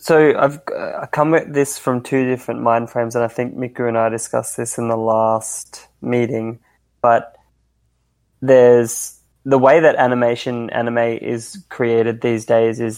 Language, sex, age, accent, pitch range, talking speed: English, male, 20-39, Australian, 115-125 Hz, 165 wpm